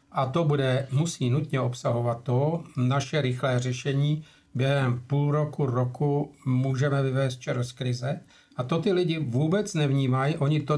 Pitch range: 135-155 Hz